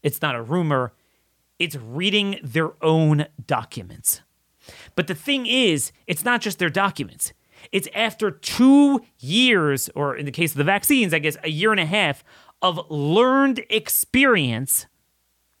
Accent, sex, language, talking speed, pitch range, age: American, male, English, 150 wpm, 130-200 Hz, 30-49